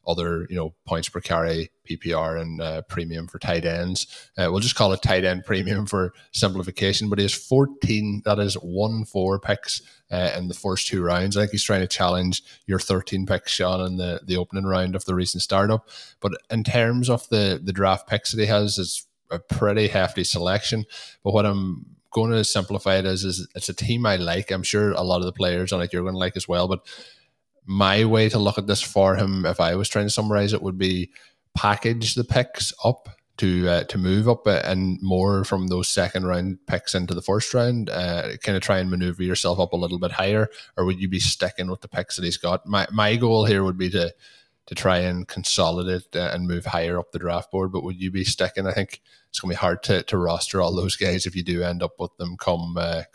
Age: 20-39